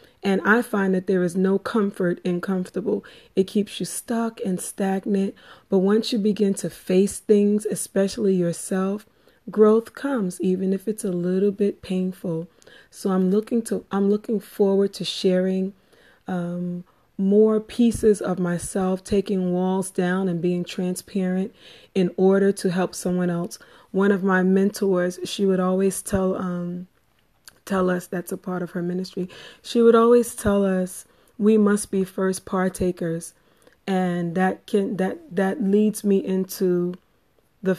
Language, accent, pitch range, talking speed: English, American, 185-205 Hz, 150 wpm